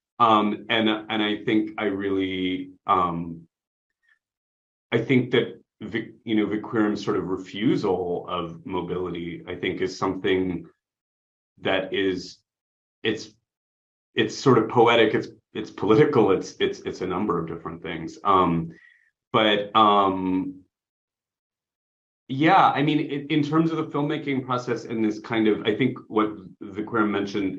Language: English